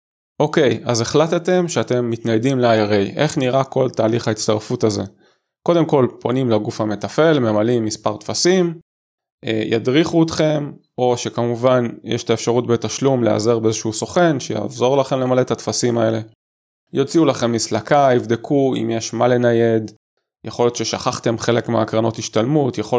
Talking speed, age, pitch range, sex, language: 140 wpm, 20-39, 110-135 Hz, male, Hebrew